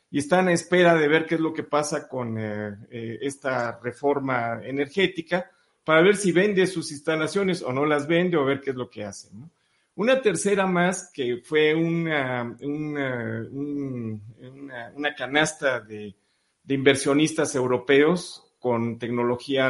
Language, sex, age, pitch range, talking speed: Spanish, male, 40-59, 125-160 Hz, 145 wpm